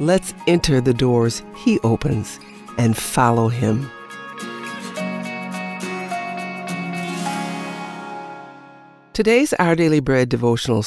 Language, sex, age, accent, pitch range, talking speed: English, female, 60-79, American, 115-175 Hz, 75 wpm